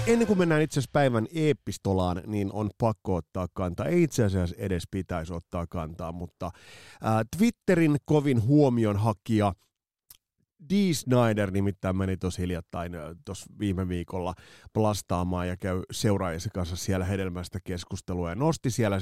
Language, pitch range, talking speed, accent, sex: Finnish, 90-120 Hz, 140 wpm, native, male